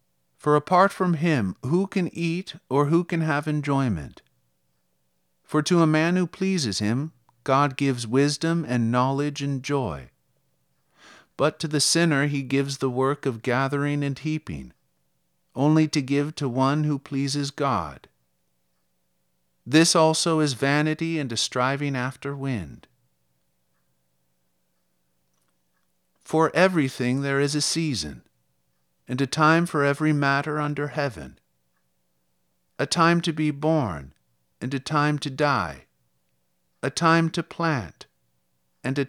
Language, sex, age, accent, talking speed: English, male, 50-69, American, 130 wpm